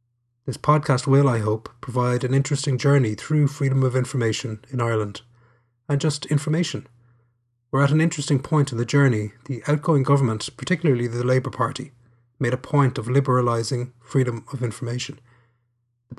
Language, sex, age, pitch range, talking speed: English, male, 30-49, 120-140 Hz, 155 wpm